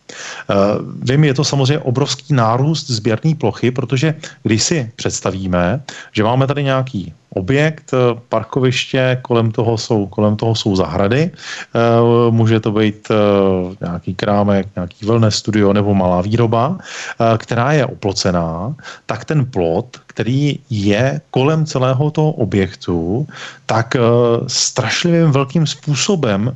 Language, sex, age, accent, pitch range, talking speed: Czech, male, 40-59, native, 110-140 Hz, 115 wpm